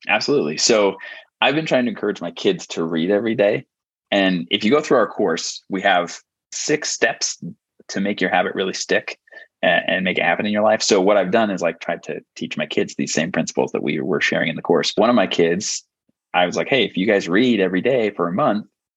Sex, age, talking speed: male, 20-39, 240 wpm